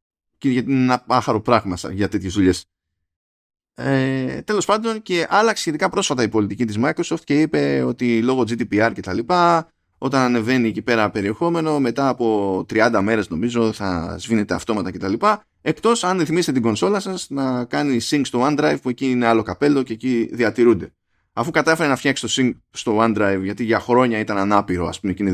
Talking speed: 175 wpm